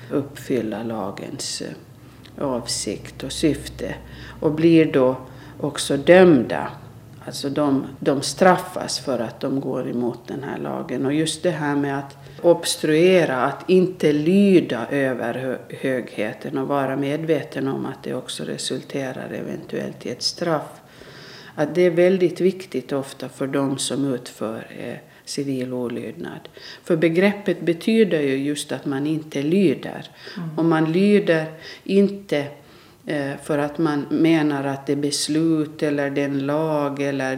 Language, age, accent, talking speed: Swedish, 50-69, native, 130 wpm